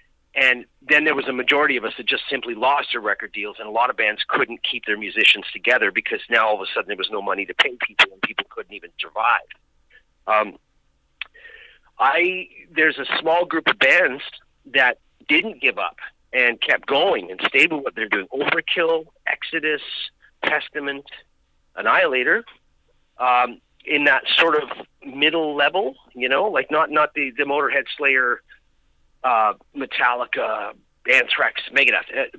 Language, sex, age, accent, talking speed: English, male, 50-69, American, 160 wpm